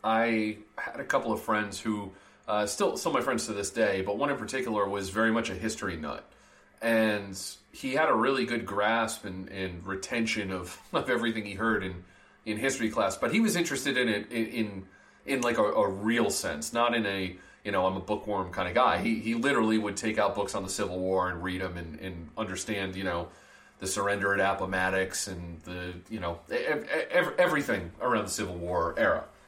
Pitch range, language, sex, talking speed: 95-120 Hz, English, male, 215 wpm